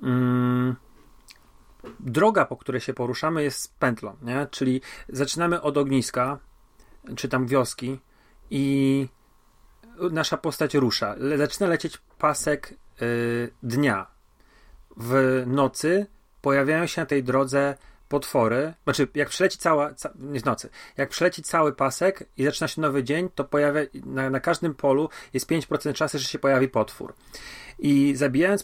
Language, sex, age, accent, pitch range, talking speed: Polish, male, 40-59, native, 130-150 Hz, 135 wpm